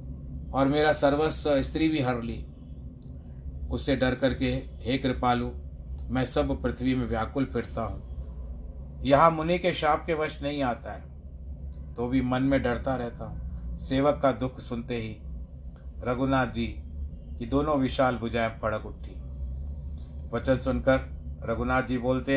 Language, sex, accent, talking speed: Hindi, male, native, 140 wpm